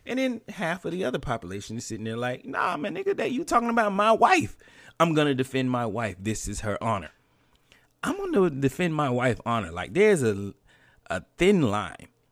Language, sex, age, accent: English, male, 30-49, American